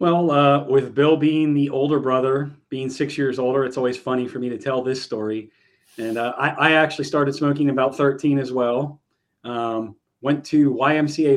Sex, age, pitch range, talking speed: male, 30-49, 125-150 Hz, 190 wpm